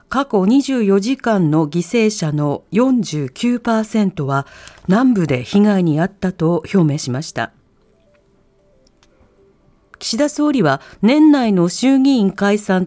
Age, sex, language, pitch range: 40-59, female, Japanese, 165-260 Hz